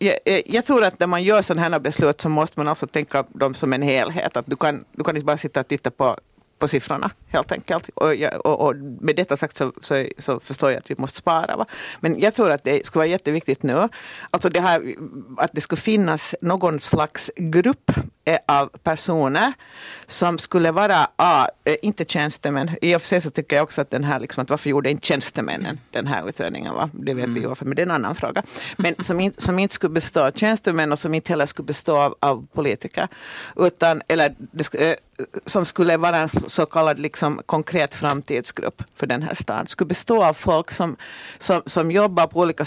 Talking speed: 210 wpm